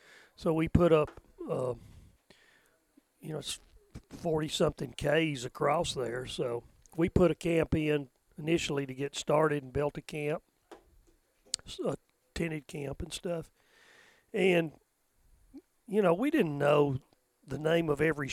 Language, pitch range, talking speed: English, 140-170 Hz, 135 wpm